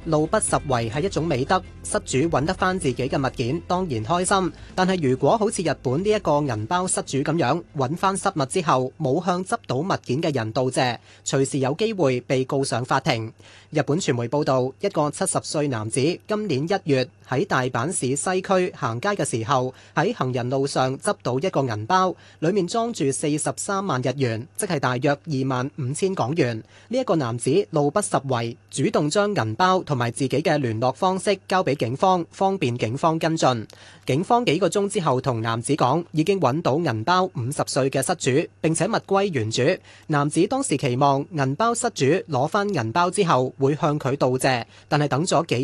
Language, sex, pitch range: Chinese, male, 130-185 Hz